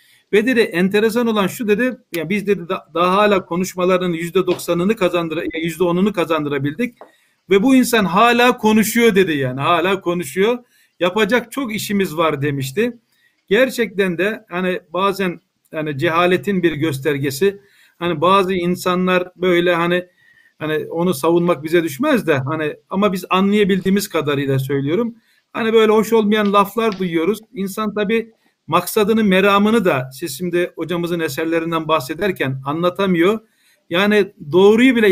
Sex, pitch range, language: male, 175-225 Hz, Turkish